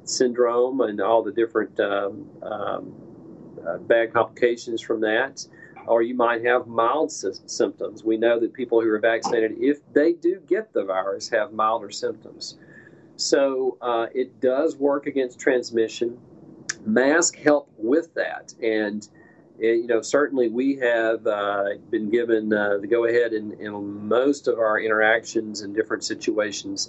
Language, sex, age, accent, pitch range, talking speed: English, male, 40-59, American, 110-140 Hz, 155 wpm